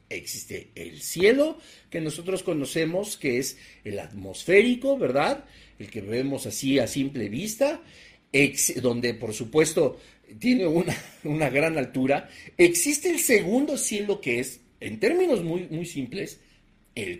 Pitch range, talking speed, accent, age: 140-225 Hz, 135 wpm, Mexican, 50-69